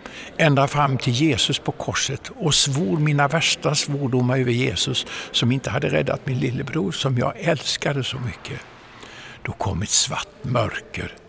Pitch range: 120-145 Hz